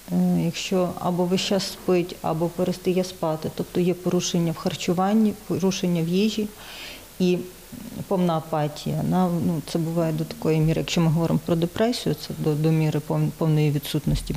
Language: Ukrainian